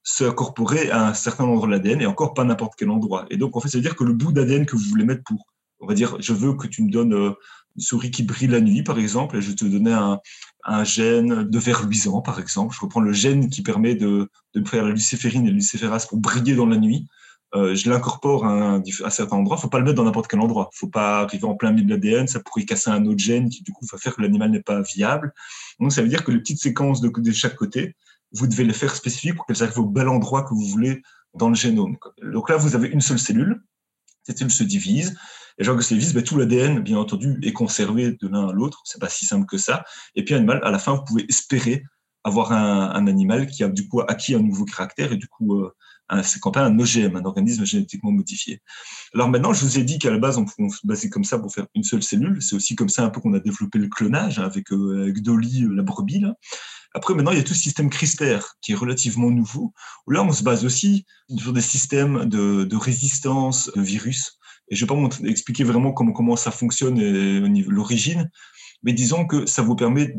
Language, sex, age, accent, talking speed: French, male, 20-39, French, 260 wpm